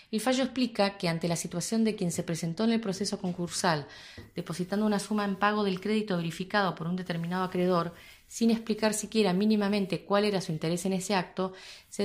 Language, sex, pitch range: Spanish, female, 175-205 Hz